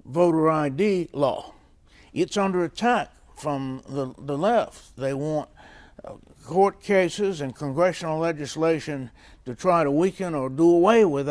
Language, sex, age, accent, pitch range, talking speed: English, male, 60-79, American, 135-185 Hz, 135 wpm